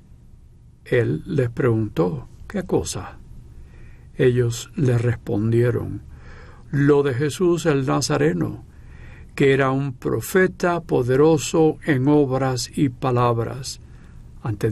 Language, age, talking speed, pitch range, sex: Spanish, 60-79, 95 wpm, 120-160 Hz, male